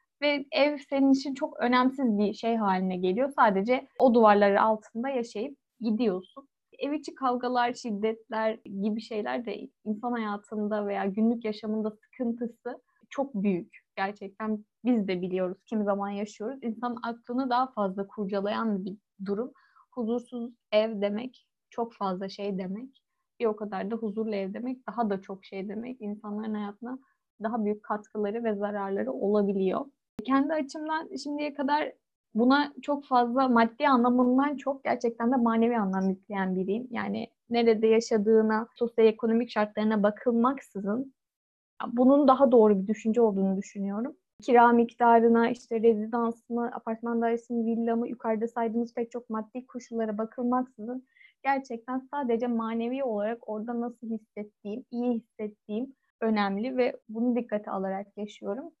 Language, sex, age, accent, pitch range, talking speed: Turkish, female, 10-29, native, 210-250 Hz, 135 wpm